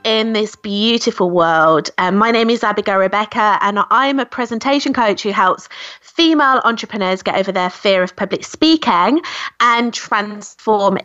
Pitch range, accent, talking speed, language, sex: 190-270 Hz, British, 150 wpm, English, female